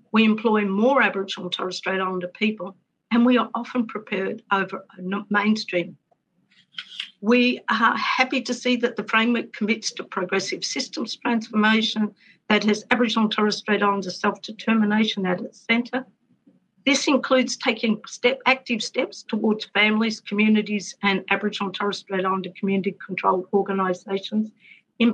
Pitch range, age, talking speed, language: 195-235 Hz, 50-69, 145 wpm, English